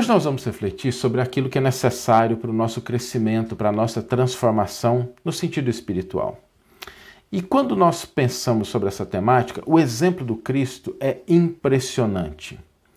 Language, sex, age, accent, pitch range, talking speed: Portuguese, male, 50-69, Brazilian, 110-155 Hz, 155 wpm